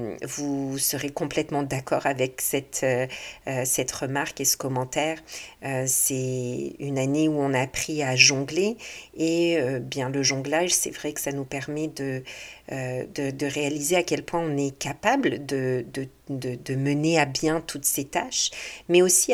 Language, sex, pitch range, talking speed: French, female, 135-160 Hz, 175 wpm